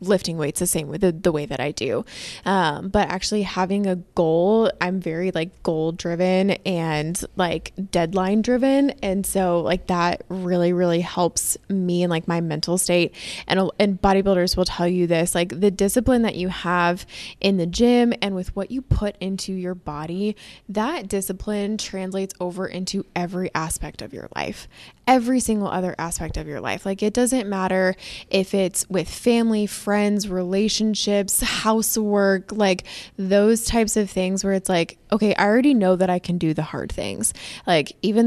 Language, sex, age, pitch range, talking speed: English, female, 20-39, 175-200 Hz, 175 wpm